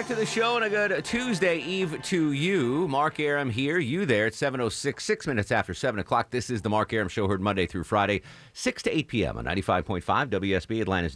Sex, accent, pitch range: male, American, 100-140 Hz